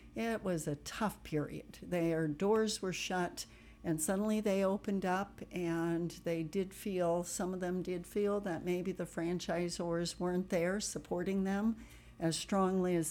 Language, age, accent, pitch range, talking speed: English, 60-79, American, 165-195 Hz, 155 wpm